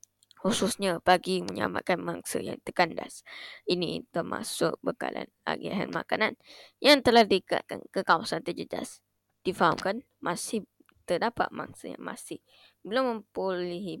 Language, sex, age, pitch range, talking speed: Malay, female, 20-39, 155-225 Hz, 105 wpm